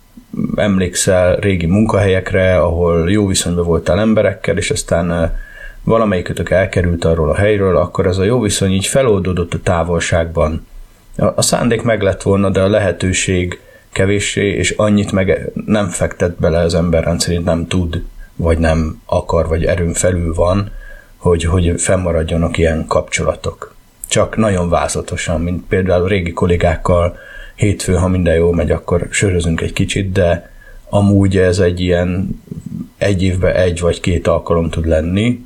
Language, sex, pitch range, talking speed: Hungarian, male, 85-105 Hz, 145 wpm